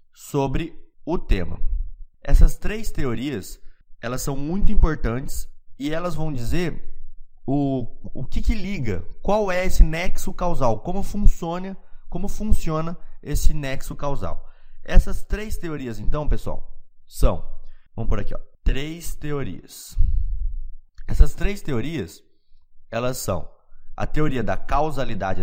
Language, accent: Portuguese, Brazilian